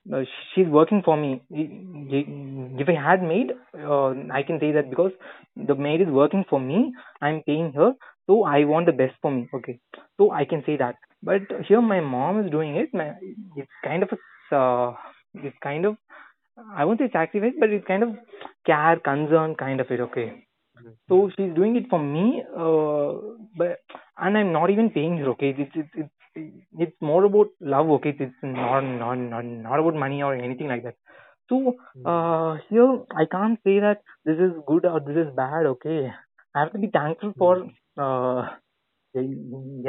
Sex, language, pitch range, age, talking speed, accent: male, English, 140-195 Hz, 20-39, 185 wpm, Indian